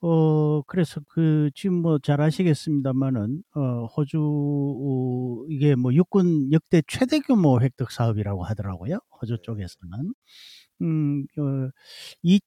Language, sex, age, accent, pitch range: Korean, male, 50-69, native, 110-165 Hz